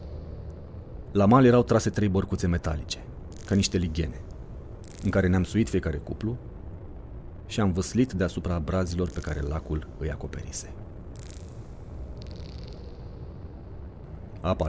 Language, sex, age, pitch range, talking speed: Romanian, male, 40-59, 70-90 Hz, 110 wpm